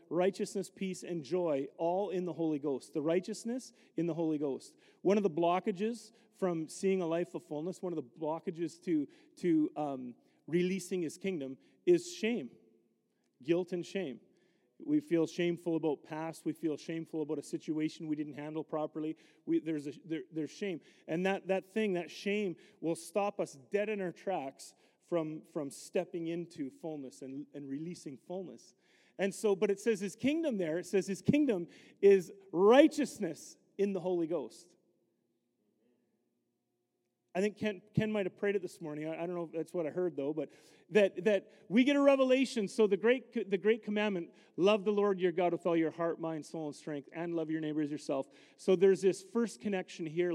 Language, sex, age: English, male, 40-59